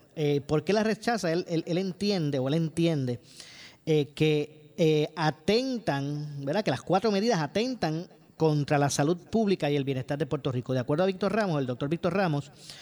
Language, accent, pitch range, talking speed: Spanish, American, 140-170 Hz, 190 wpm